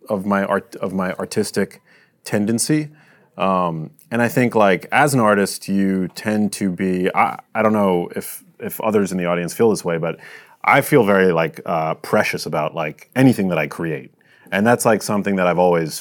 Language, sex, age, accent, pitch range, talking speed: English, male, 30-49, American, 90-115 Hz, 195 wpm